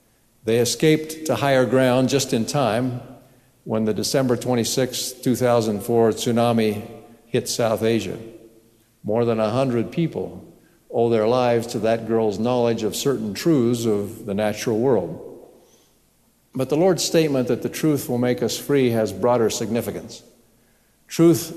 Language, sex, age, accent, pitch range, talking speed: English, male, 60-79, American, 110-130 Hz, 140 wpm